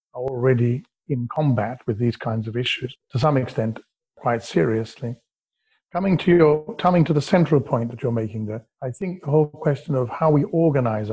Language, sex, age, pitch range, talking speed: English, male, 50-69, 115-140 Hz, 180 wpm